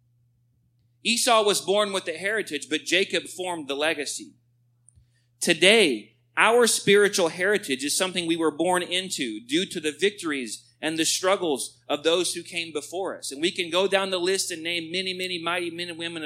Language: English